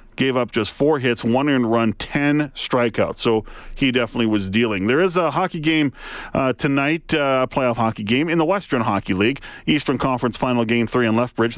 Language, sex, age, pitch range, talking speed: English, male, 40-59, 105-130 Hz, 205 wpm